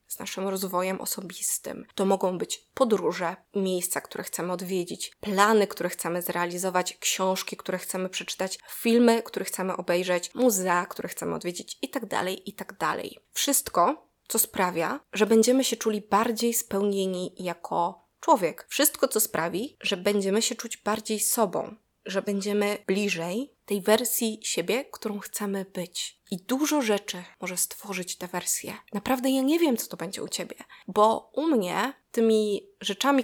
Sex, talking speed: female, 145 wpm